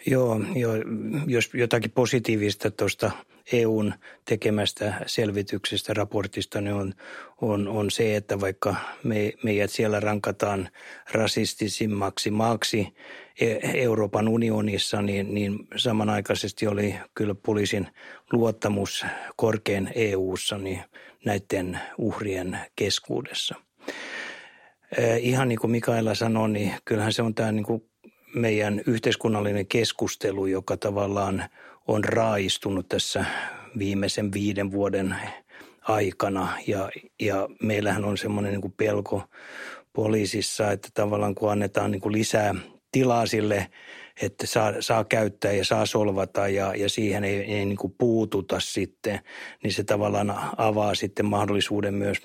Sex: male